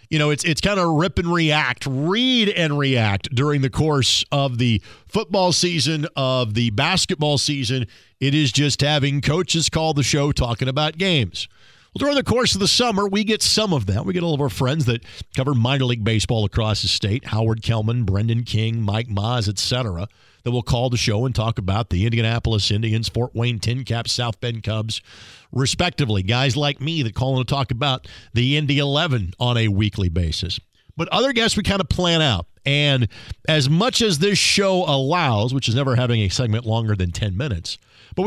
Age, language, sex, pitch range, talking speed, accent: 50-69, English, male, 110-155 Hz, 200 wpm, American